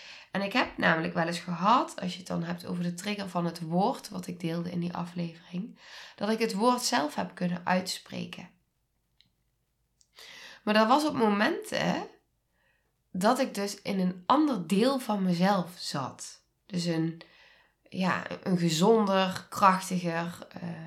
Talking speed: 150 wpm